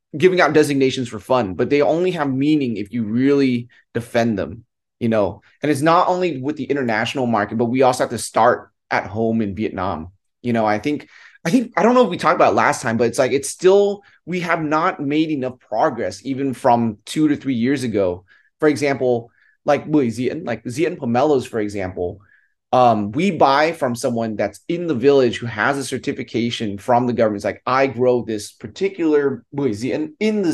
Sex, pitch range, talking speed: male, 115-150 Hz, 200 wpm